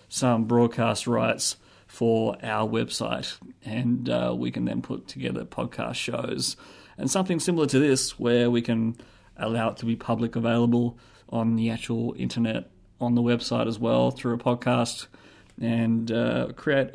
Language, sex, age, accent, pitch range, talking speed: English, male, 30-49, Australian, 115-130 Hz, 155 wpm